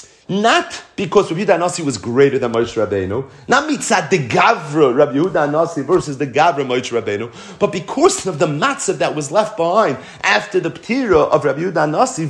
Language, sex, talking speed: English, male, 165 wpm